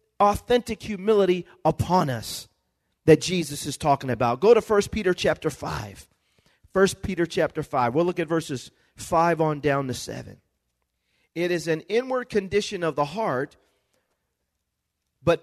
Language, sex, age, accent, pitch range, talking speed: English, male, 40-59, American, 110-180 Hz, 145 wpm